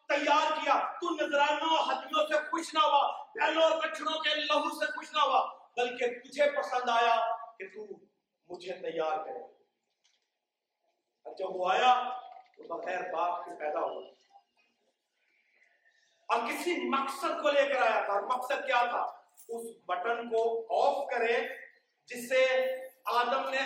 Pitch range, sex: 260-360 Hz, male